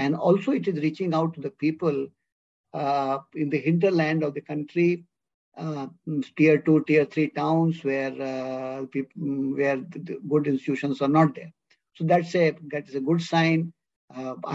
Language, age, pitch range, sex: English, 50-69, 145-170 Hz, male